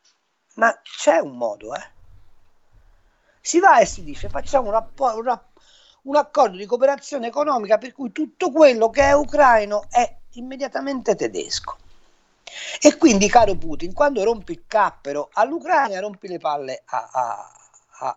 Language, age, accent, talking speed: Italian, 50-69, native, 140 wpm